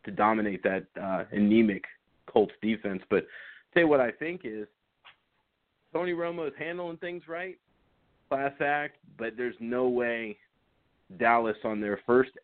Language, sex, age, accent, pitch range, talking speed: English, male, 30-49, American, 110-130 Hz, 150 wpm